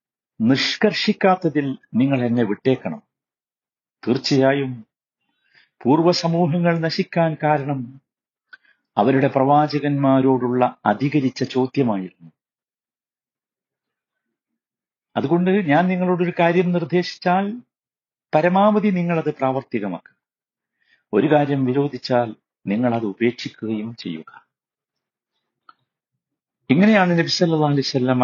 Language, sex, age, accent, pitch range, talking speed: Malayalam, male, 50-69, native, 125-175 Hz, 60 wpm